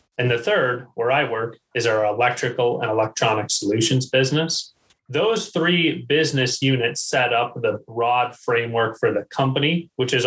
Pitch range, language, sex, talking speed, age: 120-145 Hz, English, male, 160 wpm, 30-49